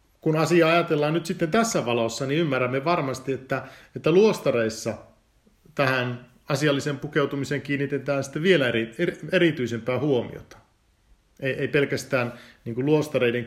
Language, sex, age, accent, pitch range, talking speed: Finnish, male, 50-69, native, 115-145 Hz, 110 wpm